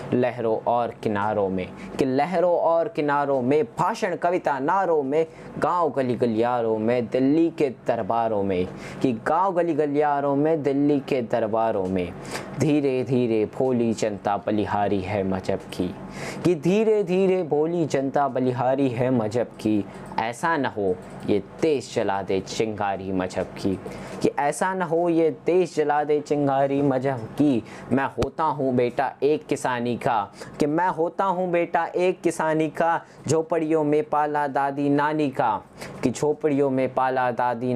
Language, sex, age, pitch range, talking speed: Hindi, male, 20-39, 115-150 Hz, 145 wpm